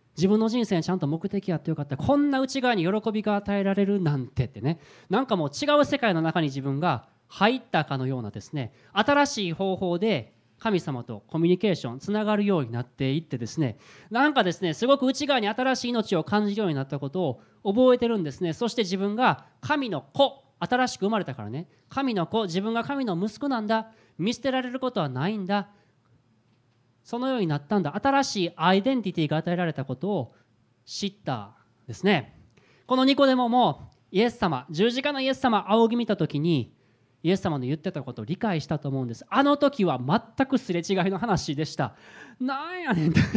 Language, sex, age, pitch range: Japanese, male, 20-39, 140-230 Hz